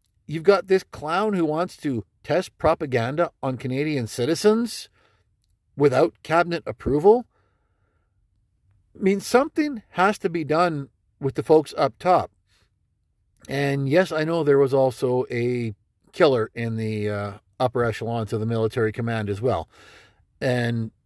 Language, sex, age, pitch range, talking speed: English, male, 50-69, 105-150 Hz, 135 wpm